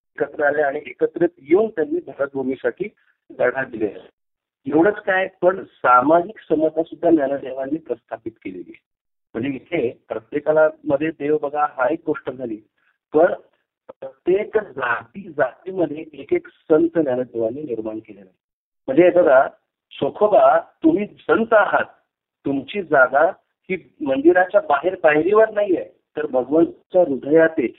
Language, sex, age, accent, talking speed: Marathi, male, 50-69, native, 125 wpm